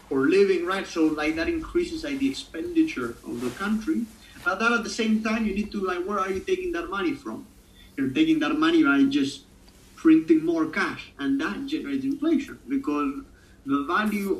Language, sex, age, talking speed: English, male, 30-49, 190 wpm